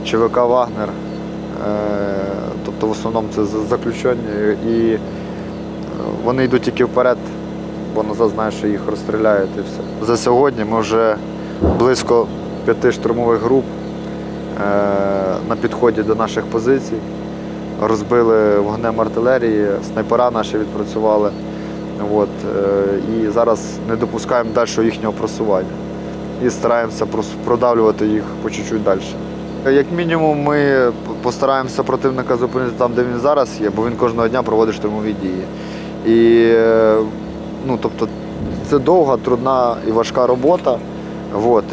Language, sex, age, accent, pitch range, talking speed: Russian, male, 20-39, native, 110-130 Hz, 115 wpm